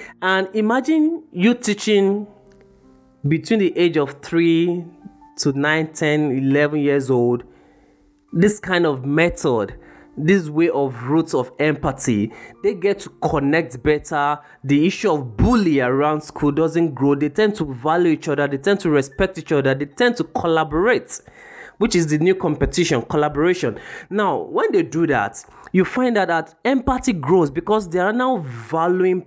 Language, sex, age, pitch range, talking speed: English, male, 20-39, 140-185 Hz, 155 wpm